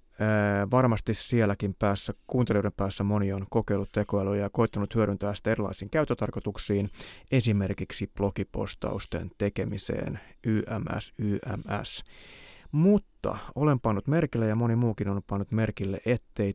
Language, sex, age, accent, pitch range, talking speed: Finnish, male, 30-49, native, 100-130 Hz, 110 wpm